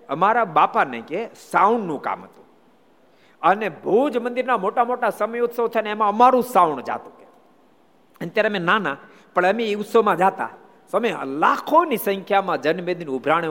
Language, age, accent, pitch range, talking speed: Gujarati, 50-69, native, 185-250 Hz, 85 wpm